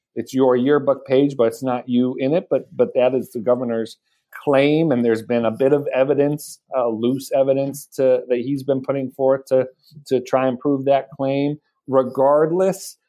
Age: 40-59